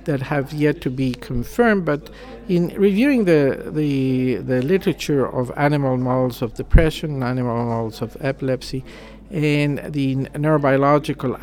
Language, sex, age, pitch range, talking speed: English, male, 50-69, 130-175 Hz, 130 wpm